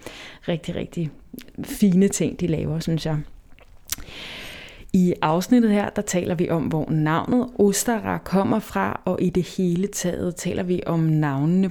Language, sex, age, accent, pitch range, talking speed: Danish, female, 20-39, native, 170-200 Hz, 150 wpm